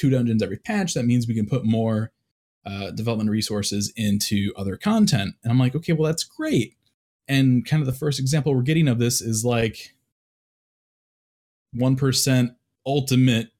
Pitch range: 115-160 Hz